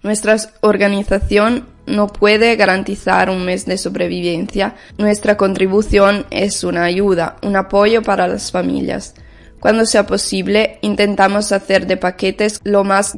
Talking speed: 125 wpm